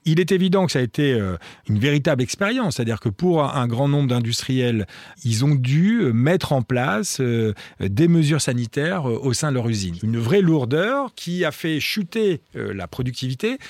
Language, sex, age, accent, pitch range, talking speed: French, male, 40-59, French, 110-155 Hz, 175 wpm